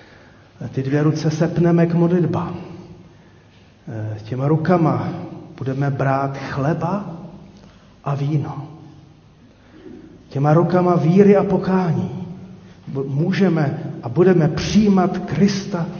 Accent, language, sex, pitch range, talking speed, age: native, Czech, male, 130-170 Hz, 85 wpm, 40-59